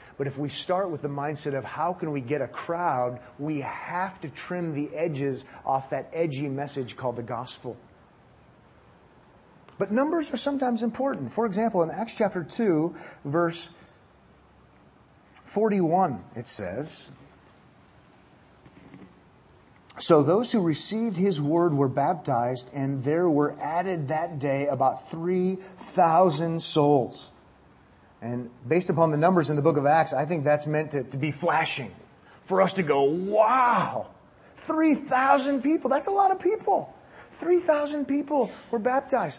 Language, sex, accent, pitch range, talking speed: English, male, American, 150-245 Hz, 140 wpm